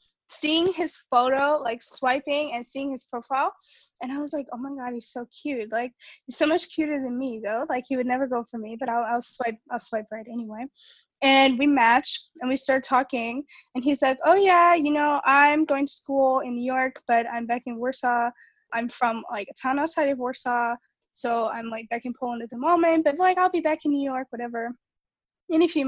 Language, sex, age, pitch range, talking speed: English, female, 20-39, 245-310 Hz, 225 wpm